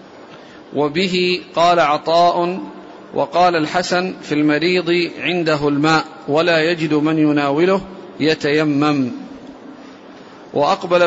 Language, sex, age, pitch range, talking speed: Arabic, male, 50-69, 155-180 Hz, 80 wpm